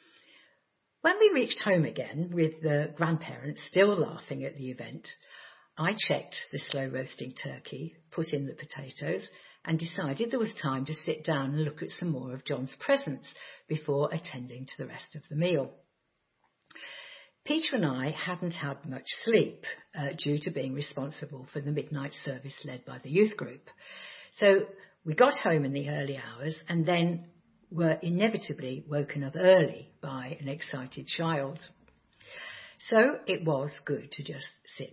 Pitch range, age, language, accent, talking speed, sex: 140-185 Hz, 50-69, English, British, 160 wpm, female